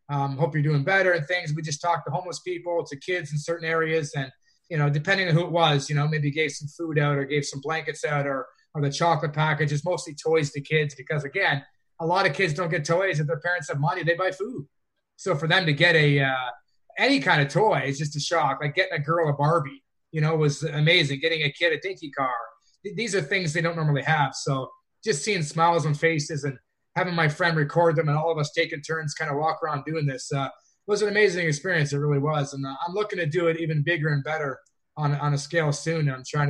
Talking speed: 250 wpm